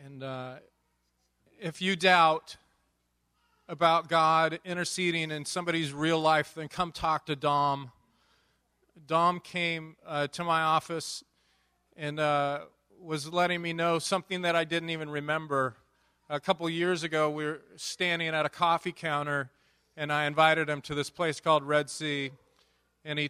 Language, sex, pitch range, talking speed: English, male, 145-170 Hz, 150 wpm